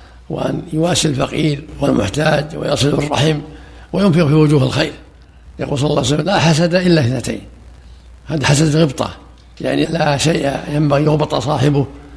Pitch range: 105-160 Hz